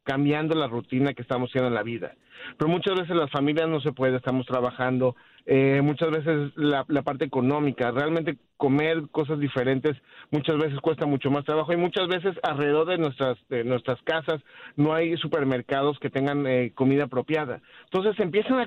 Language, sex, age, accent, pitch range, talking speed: Spanish, male, 40-59, Mexican, 140-170 Hz, 180 wpm